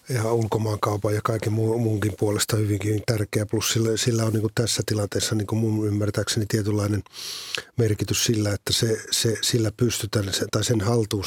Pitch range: 105-115 Hz